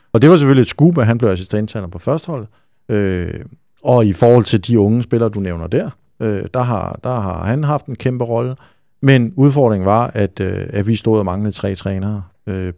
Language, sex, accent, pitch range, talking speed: Danish, male, native, 100-125 Hz, 220 wpm